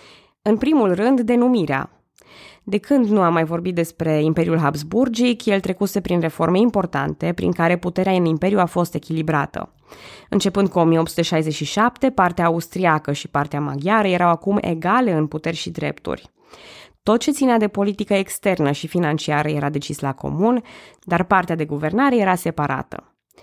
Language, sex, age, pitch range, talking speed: Romanian, female, 20-39, 160-205 Hz, 150 wpm